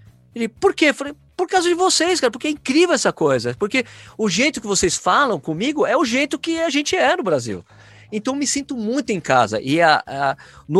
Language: Portuguese